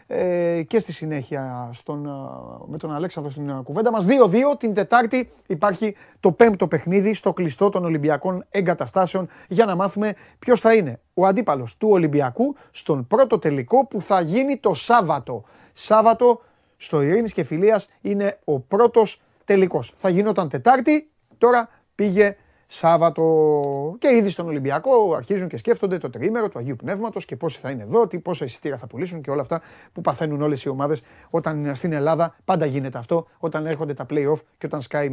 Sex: male